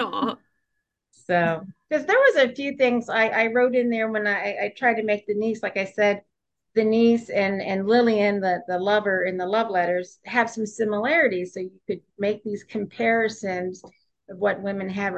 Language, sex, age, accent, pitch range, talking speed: English, female, 40-59, American, 185-245 Hz, 190 wpm